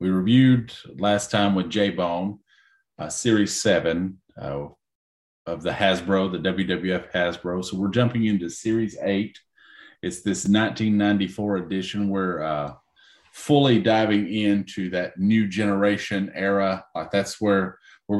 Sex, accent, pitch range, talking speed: male, American, 95-110 Hz, 130 wpm